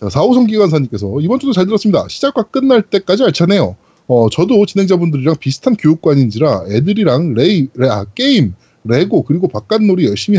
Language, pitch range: Korean, 150-225 Hz